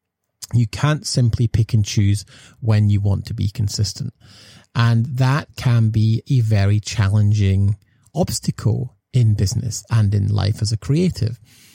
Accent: British